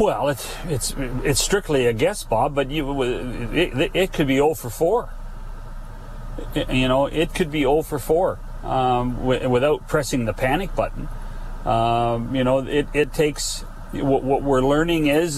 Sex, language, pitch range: male, English, 125-150 Hz